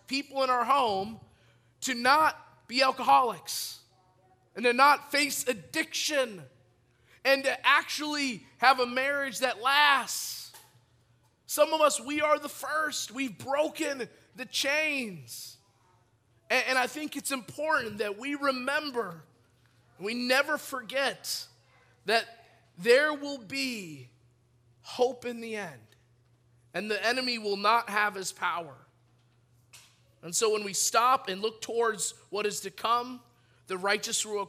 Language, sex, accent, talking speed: English, male, American, 130 wpm